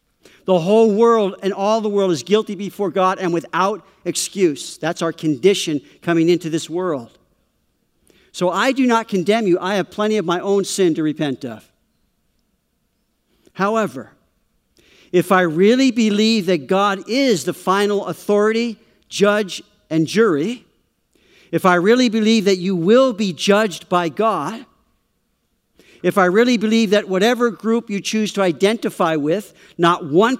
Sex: male